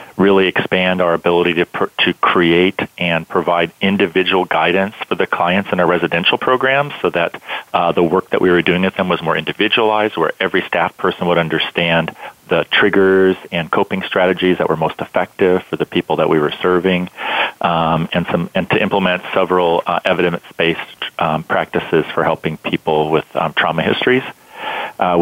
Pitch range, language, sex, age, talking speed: 85-95 Hz, English, male, 40-59, 175 wpm